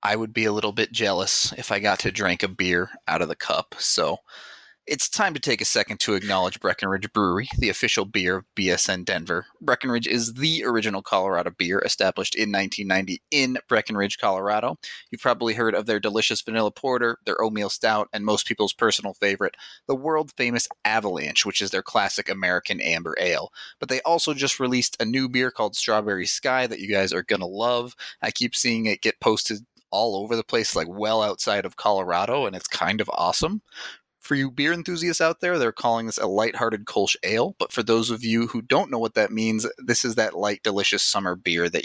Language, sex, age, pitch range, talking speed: English, male, 30-49, 105-125 Hz, 205 wpm